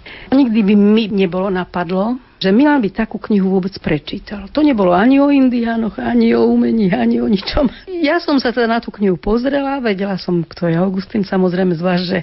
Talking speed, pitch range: 195 wpm, 185-230 Hz